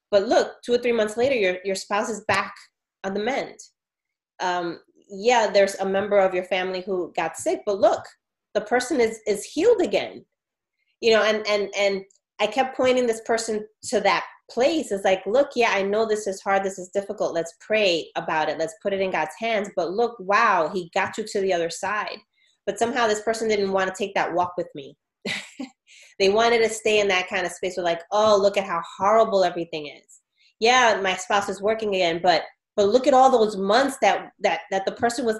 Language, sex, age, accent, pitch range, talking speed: English, female, 30-49, American, 190-225 Hz, 215 wpm